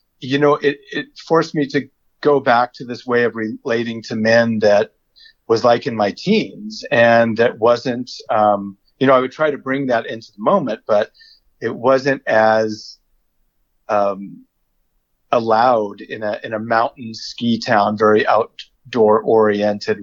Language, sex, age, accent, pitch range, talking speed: English, male, 40-59, American, 110-140 Hz, 160 wpm